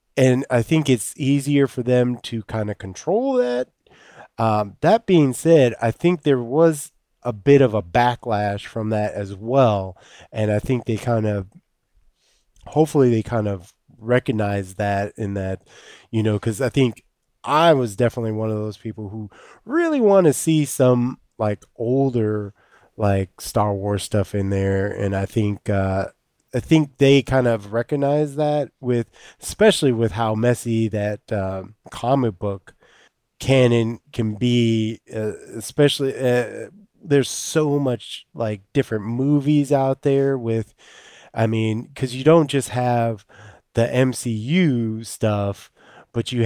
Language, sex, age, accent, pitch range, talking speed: English, male, 20-39, American, 105-140 Hz, 150 wpm